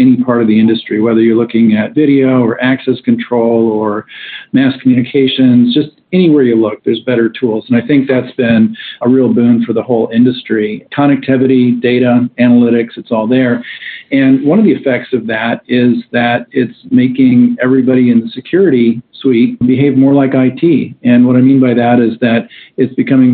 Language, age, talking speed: English, 50-69, 185 wpm